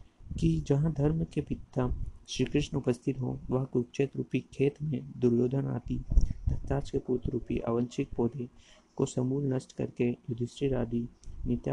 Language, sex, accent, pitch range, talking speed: Hindi, male, native, 120-135 Hz, 130 wpm